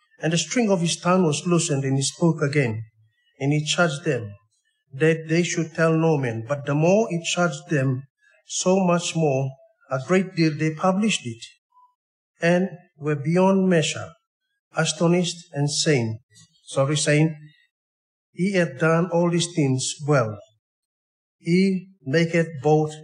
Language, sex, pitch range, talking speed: English, male, 145-180 Hz, 145 wpm